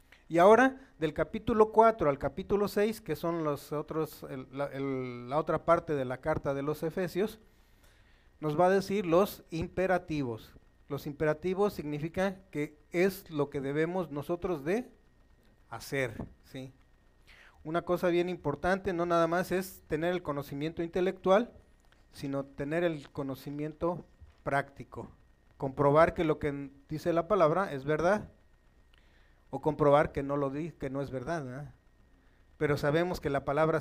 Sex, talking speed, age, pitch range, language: male, 150 wpm, 40-59, 140-175 Hz, Spanish